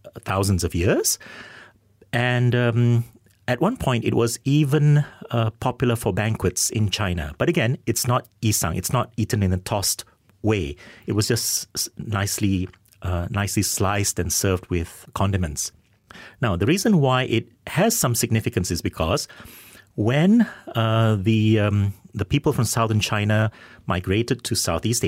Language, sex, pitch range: English, male, 95-120 Hz